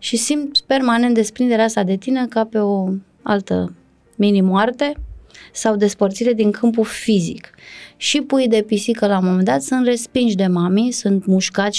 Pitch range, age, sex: 190-235 Hz, 20-39, female